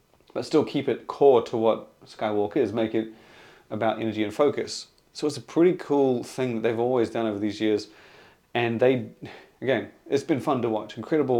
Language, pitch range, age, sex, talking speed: English, 110-130 Hz, 30-49, male, 195 wpm